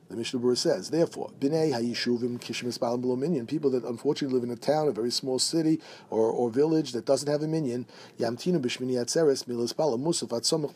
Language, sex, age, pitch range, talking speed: English, male, 50-69, 120-150 Hz, 195 wpm